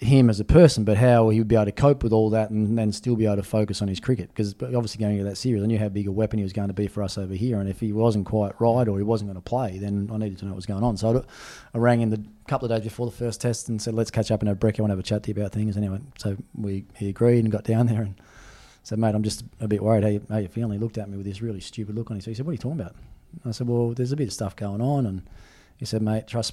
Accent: Australian